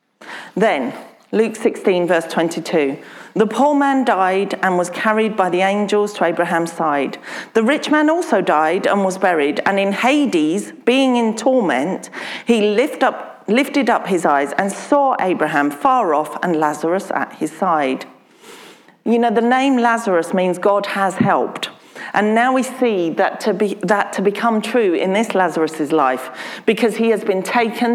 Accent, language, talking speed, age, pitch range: British, English, 165 wpm, 40-59, 185-250 Hz